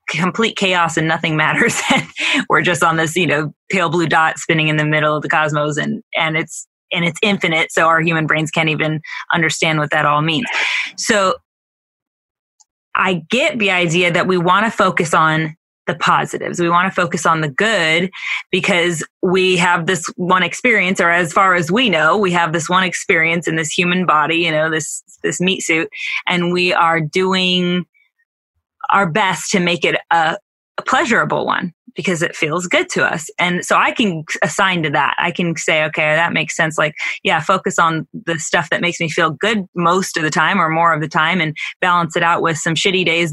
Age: 20-39